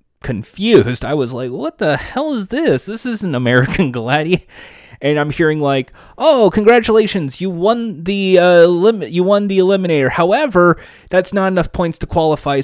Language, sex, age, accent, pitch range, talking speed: English, male, 30-49, American, 120-175 Hz, 165 wpm